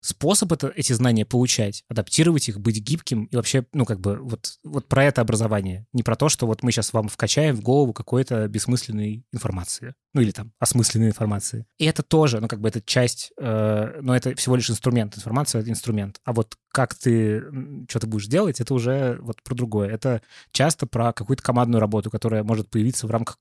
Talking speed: 200 wpm